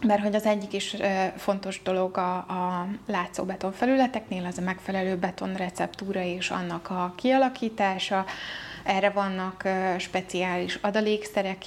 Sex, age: female, 20-39